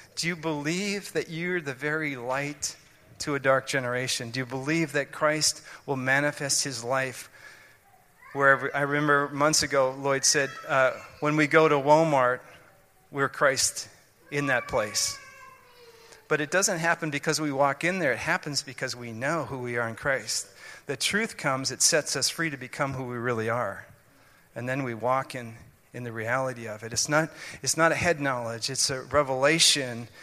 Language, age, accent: English, 40-59, American